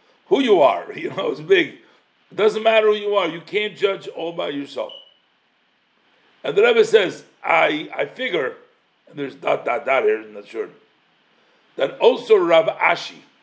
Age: 60-79